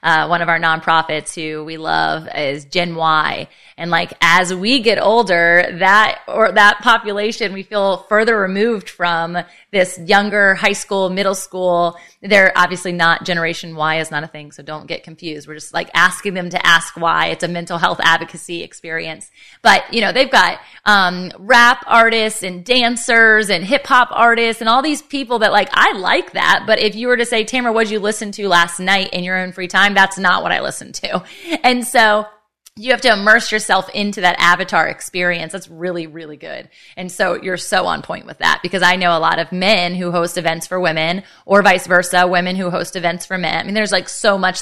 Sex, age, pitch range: female, 20-39, 170-215 Hz